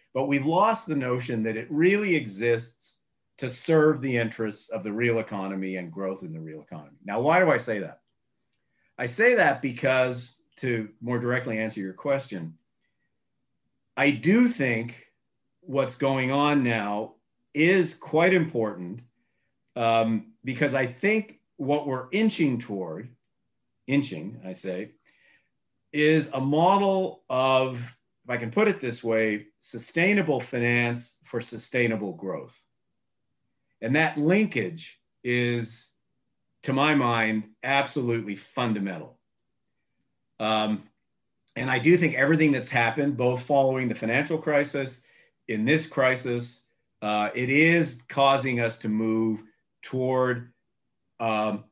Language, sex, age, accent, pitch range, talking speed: English, male, 50-69, American, 115-140 Hz, 125 wpm